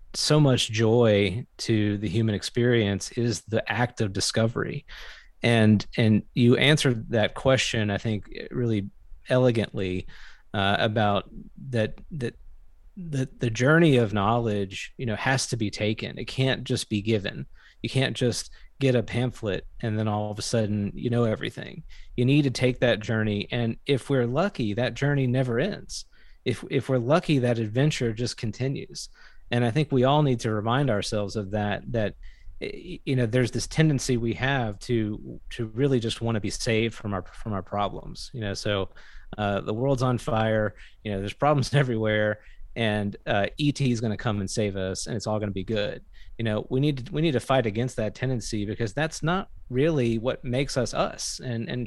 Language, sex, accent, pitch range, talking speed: English, male, American, 105-130 Hz, 190 wpm